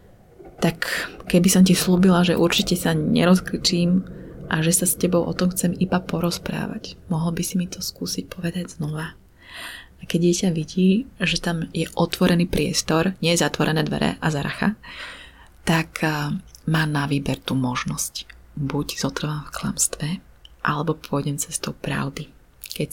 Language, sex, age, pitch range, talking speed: Slovak, female, 30-49, 155-185 Hz, 150 wpm